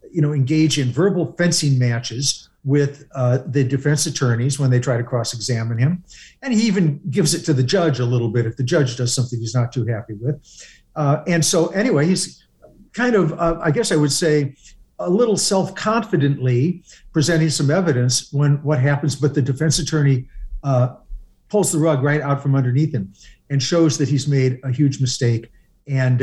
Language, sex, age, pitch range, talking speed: English, male, 50-69, 130-160 Hz, 190 wpm